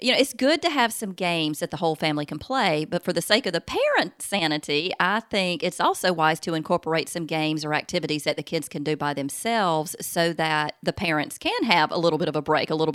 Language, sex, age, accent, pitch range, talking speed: English, female, 30-49, American, 155-185 Hz, 250 wpm